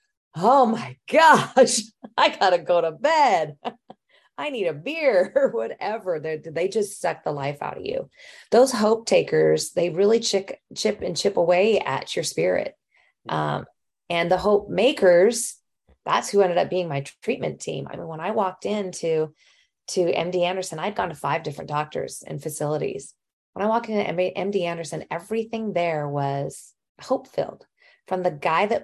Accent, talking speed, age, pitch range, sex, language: American, 170 wpm, 30-49, 160-215 Hz, female, English